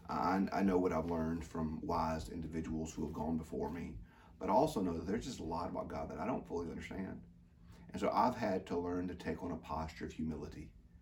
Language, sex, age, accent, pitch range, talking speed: English, male, 40-59, American, 80-90 Hz, 225 wpm